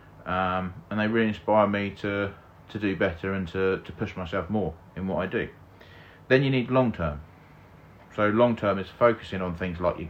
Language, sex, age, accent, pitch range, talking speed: English, male, 40-59, British, 85-110 Hz, 200 wpm